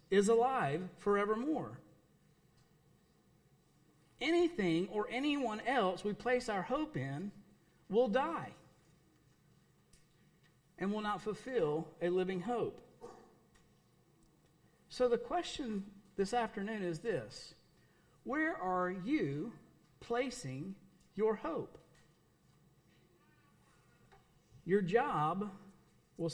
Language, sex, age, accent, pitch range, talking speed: English, male, 50-69, American, 170-240 Hz, 85 wpm